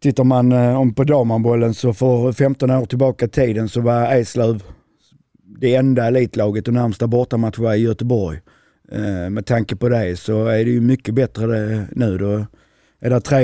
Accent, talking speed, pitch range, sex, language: native, 175 wpm, 115-130 Hz, male, Swedish